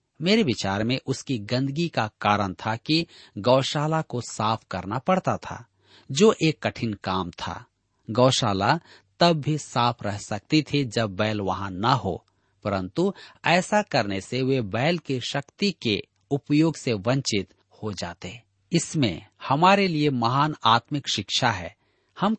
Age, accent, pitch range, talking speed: 40-59, native, 105-155 Hz, 145 wpm